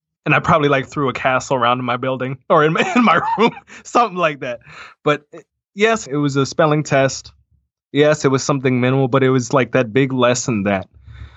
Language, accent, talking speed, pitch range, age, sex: English, American, 210 wpm, 115-140 Hz, 20-39, male